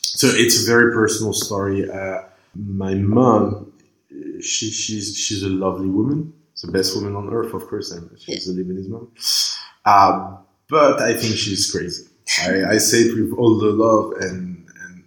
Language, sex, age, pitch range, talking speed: English, male, 20-39, 95-110 Hz, 175 wpm